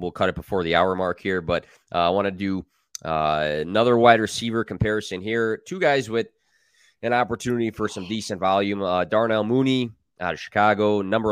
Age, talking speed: 20-39, 185 wpm